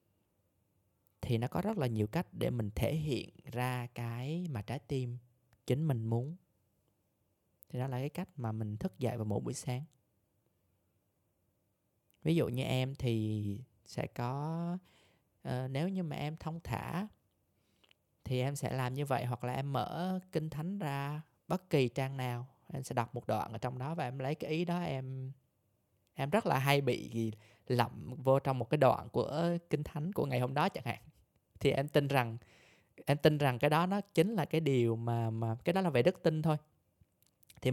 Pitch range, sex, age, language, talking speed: 110-150 Hz, male, 20-39, Vietnamese, 190 wpm